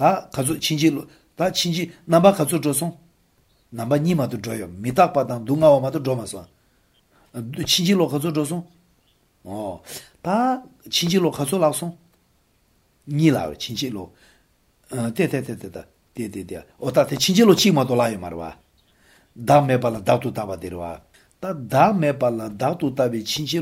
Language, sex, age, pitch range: English, male, 60-79, 120-160 Hz